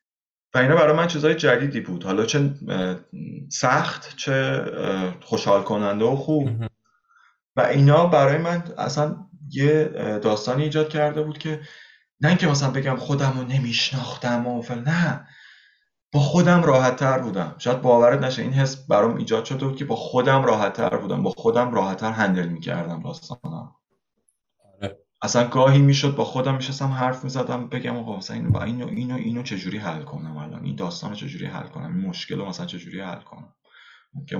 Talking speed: 155 wpm